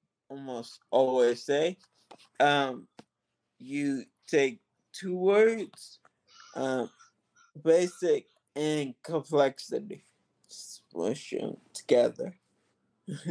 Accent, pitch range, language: American, 140-230 Hz, English